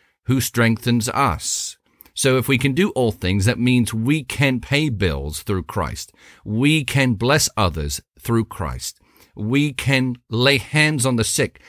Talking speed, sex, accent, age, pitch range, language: 160 wpm, male, American, 50-69, 95-125 Hz, English